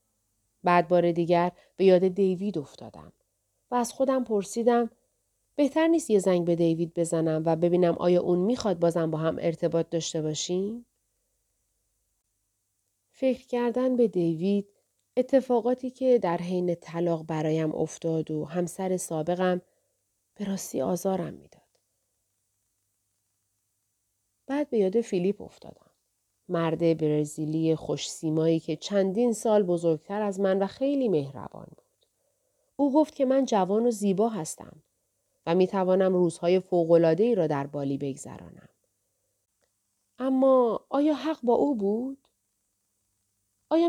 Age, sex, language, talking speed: 40-59, female, Persian, 120 wpm